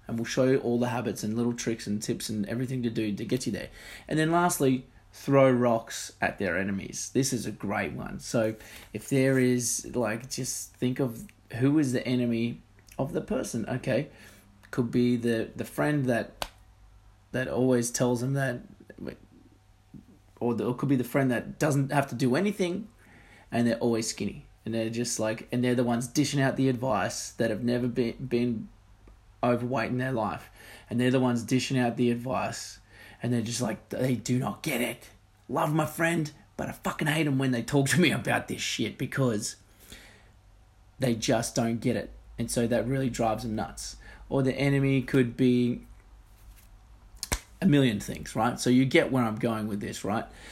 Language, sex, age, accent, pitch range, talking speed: English, male, 20-39, Australian, 110-135 Hz, 190 wpm